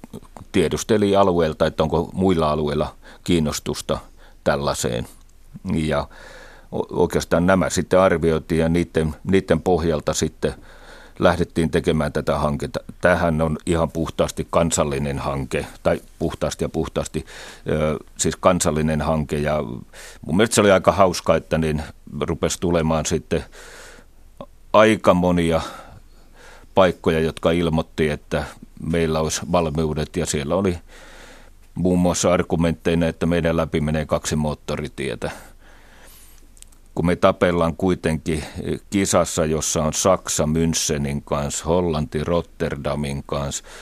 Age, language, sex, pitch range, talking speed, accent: 40-59, Finnish, male, 75-85 Hz, 110 wpm, native